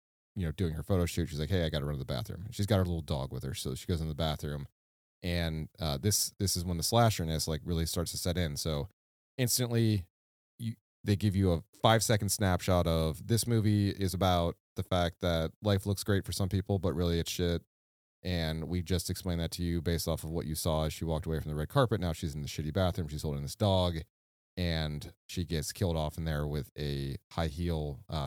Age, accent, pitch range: 30-49, American, 80-100 Hz